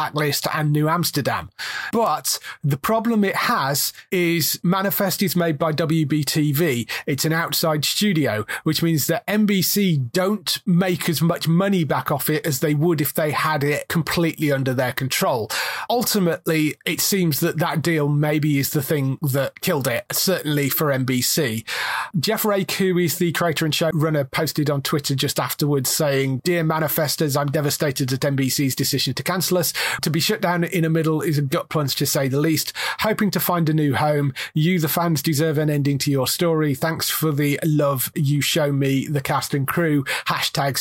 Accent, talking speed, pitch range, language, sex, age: British, 180 wpm, 145-175 Hz, English, male, 30-49